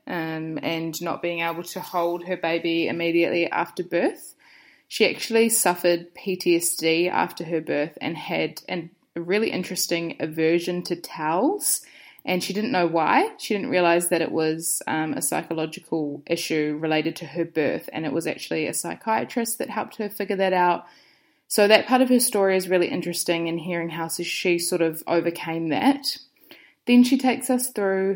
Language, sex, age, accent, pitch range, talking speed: English, female, 20-39, Australian, 170-210 Hz, 170 wpm